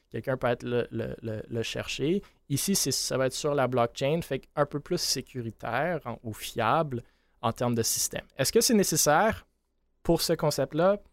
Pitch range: 115-140 Hz